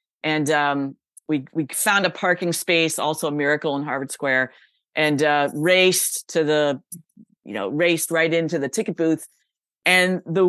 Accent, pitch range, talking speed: American, 160-195 Hz, 165 wpm